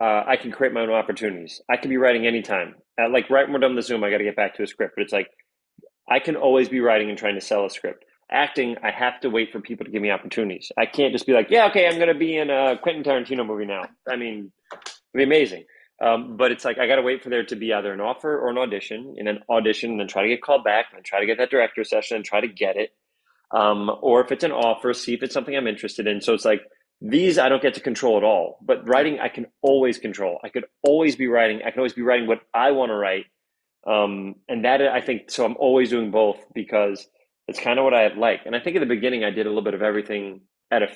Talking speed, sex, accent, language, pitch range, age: 280 wpm, male, American, English, 105-130 Hz, 30-49